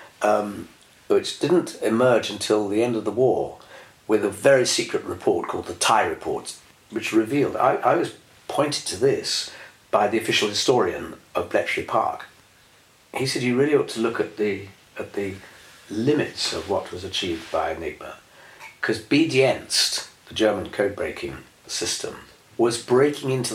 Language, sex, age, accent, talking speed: English, male, 50-69, British, 155 wpm